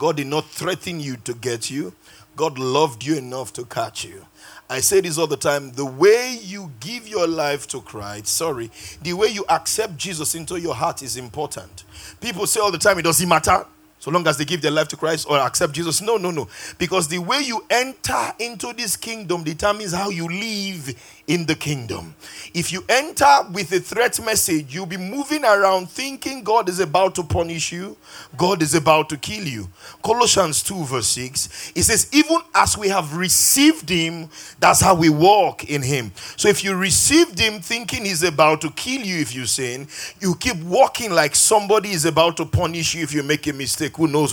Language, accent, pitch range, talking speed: English, Nigerian, 145-200 Hz, 205 wpm